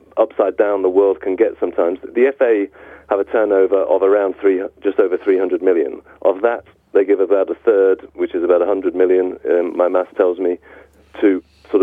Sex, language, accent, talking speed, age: male, English, British, 195 wpm, 40-59